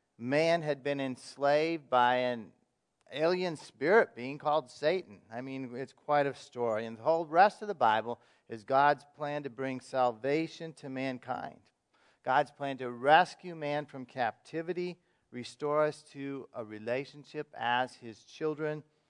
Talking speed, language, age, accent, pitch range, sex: 150 wpm, English, 40-59, American, 120-150 Hz, male